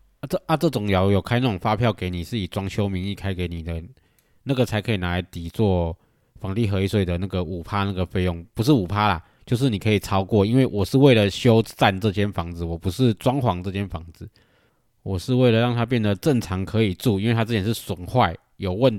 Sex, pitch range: male, 90-115 Hz